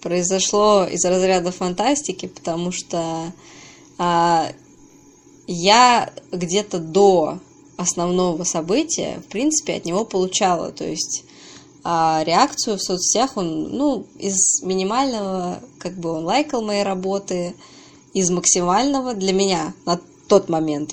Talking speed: 115 wpm